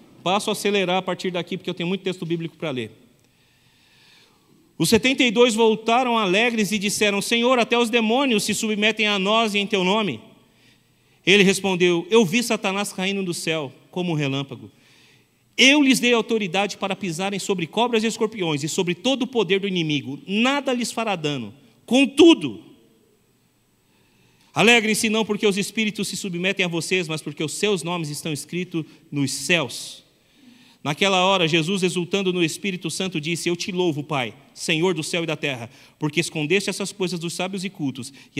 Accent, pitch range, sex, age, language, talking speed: Brazilian, 145-200 Hz, male, 40-59, Portuguese, 170 wpm